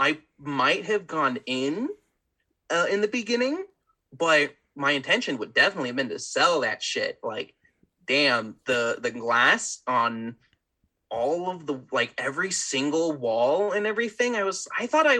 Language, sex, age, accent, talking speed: English, male, 30-49, American, 160 wpm